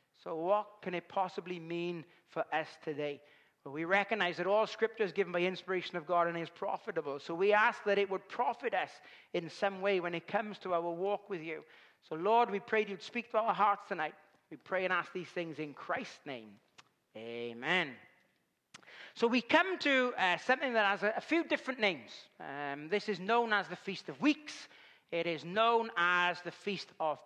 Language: English